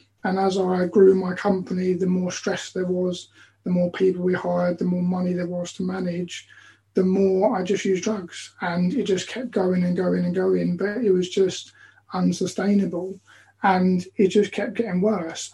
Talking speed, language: 190 wpm, English